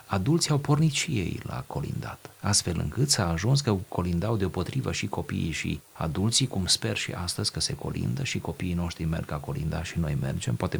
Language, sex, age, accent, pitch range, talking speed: Romanian, male, 30-49, native, 90-130 Hz, 195 wpm